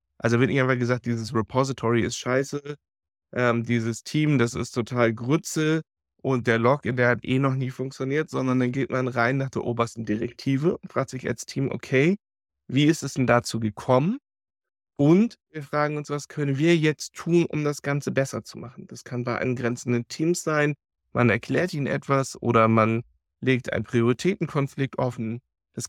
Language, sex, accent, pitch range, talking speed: German, male, German, 120-140 Hz, 180 wpm